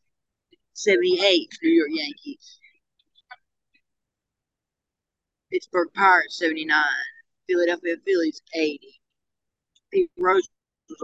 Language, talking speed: English, 70 wpm